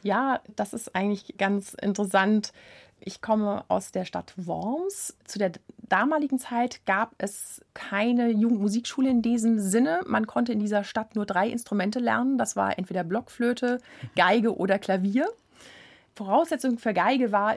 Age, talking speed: 30-49, 145 wpm